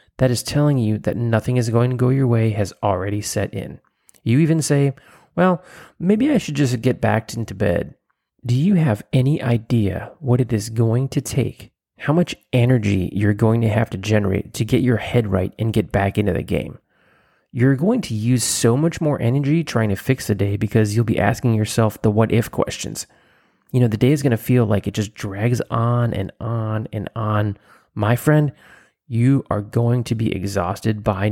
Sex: male